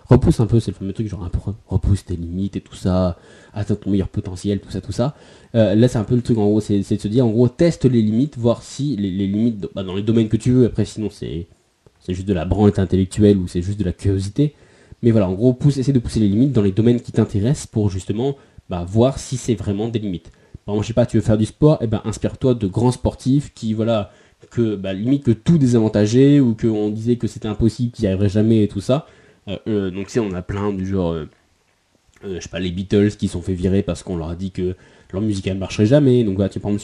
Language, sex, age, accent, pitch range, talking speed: French, male, 20-39, French, 100-120 Hz, 270 wpm